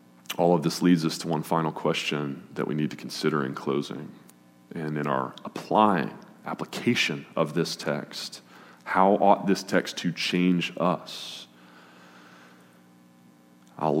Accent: American